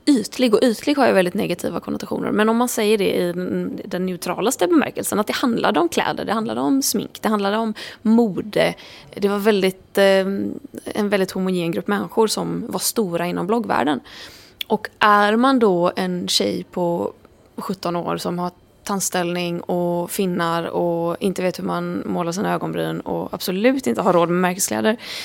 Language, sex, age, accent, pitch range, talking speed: English, female, 20-39, Swedish, 175-225 Hz, 175 wpm